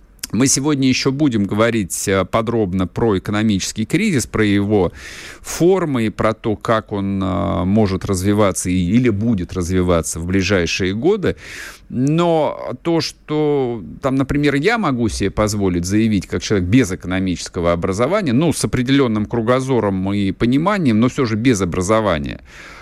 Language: Russian